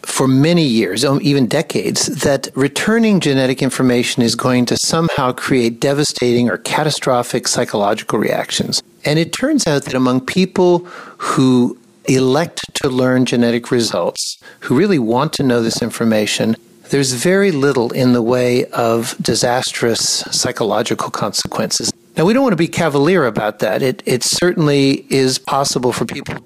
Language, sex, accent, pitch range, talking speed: English, male, American, 120-145 Hz, 145 wpm